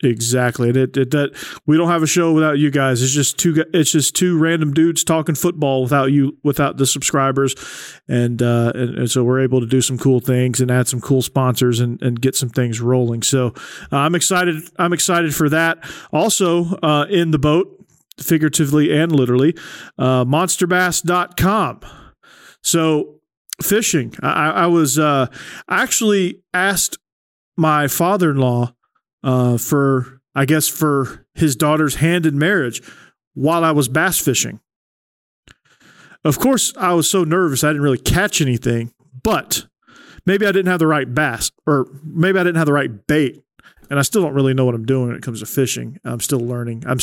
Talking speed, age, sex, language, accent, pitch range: 175 wpm, 40-59, male, English, American, 130-165 Hz